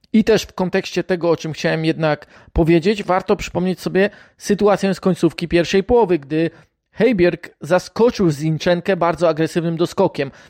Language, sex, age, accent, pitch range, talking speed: Polish, male, 20-39, native, 160-200 Hz, 145 wpm